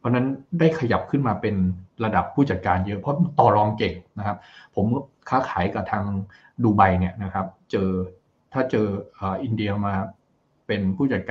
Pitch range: 95-125 Hz